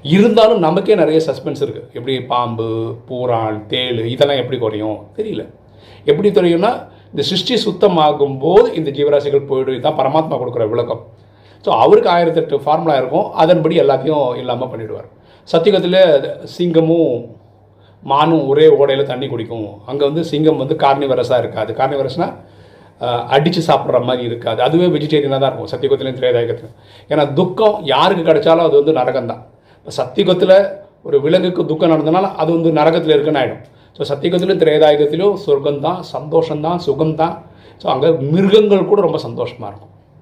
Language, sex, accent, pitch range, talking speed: Tamil, male, native, 135-195 Hz, 135 wpm